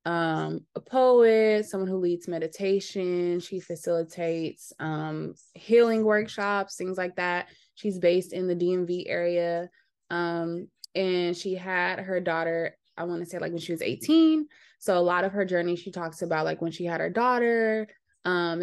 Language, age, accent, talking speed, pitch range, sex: English, 20-39, American, 170 wpm, 170-205 Hz, female